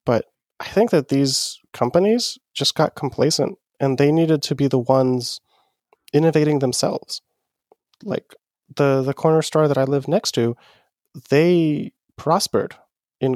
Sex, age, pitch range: male, 20-39, 135-165 Hz